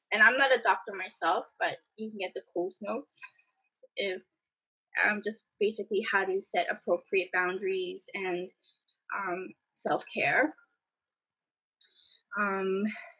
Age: 20-39